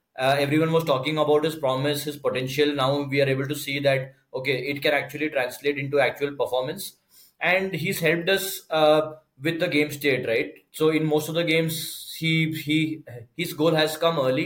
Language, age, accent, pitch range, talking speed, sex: English, 20-39, Indian, 140-155 Hz, 195 wpm, male